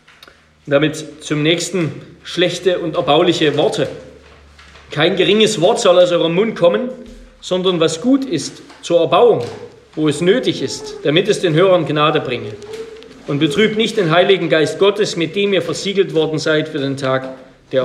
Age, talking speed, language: 40-59, 160 wpm, German